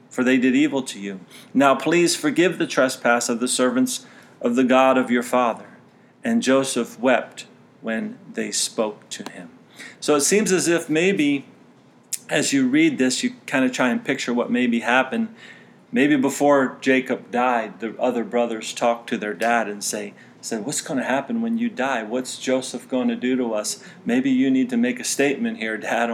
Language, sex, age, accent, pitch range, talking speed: English, male, 40-59, American, 115-160 Hz, 185 wpm